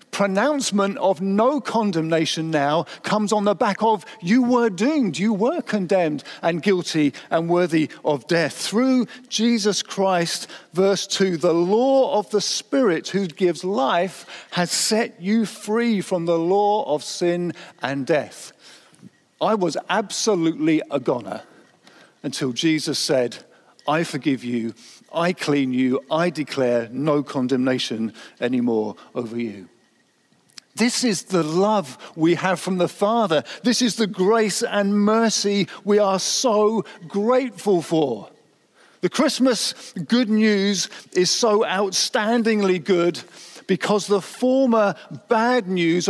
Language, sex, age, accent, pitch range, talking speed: English, male, 50-69, British, 165-215 Hz, 130 wpm